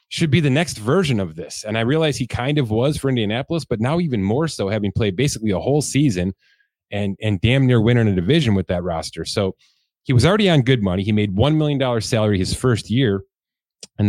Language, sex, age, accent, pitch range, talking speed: English, male, 30-49, American, 95-125 Hz, 230 wpm